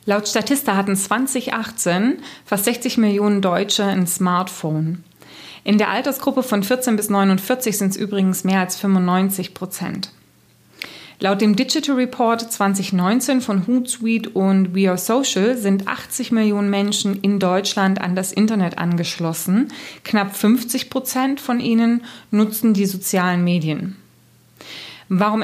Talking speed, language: 130 wpm, German